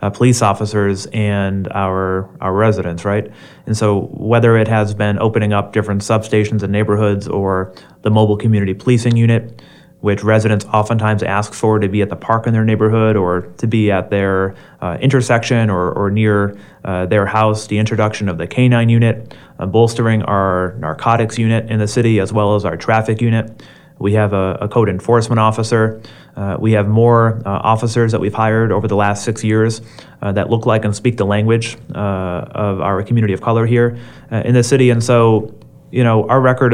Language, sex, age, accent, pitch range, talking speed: English, male, 30-49, American, 100-115 Hz, 195 wpm